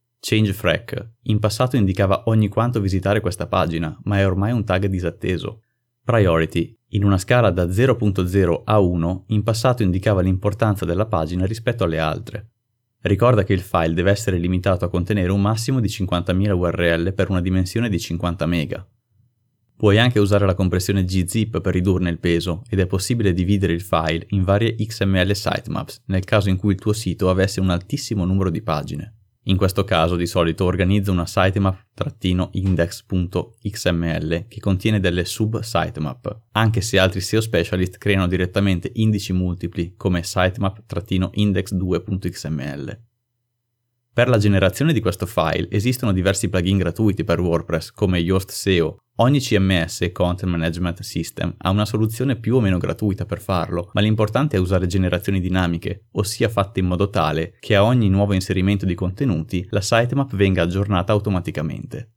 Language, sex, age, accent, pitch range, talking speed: Italian, male, 30-49, native, 90-110 Hz, 155 wpm